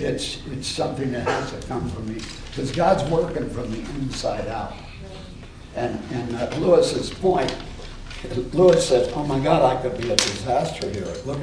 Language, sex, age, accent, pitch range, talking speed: English, male, 60-79, American, 105-165 Hz, 175 wpm